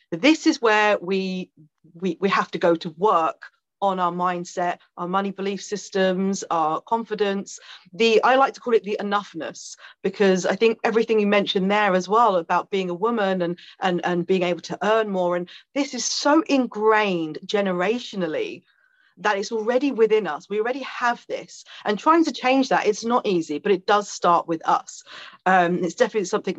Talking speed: 185 wpm